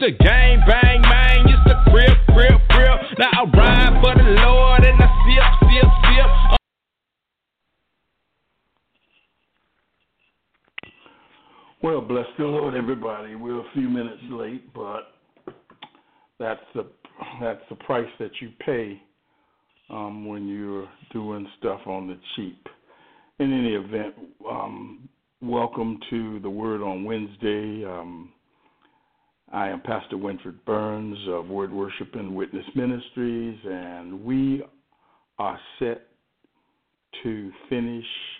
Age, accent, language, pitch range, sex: 60-79, American, English, 100-120 Hz, male